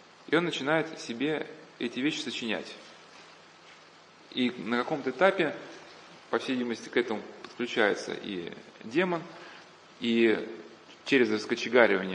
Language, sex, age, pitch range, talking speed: Russian, male, 20-39, 110-160 Hz, 110 wpm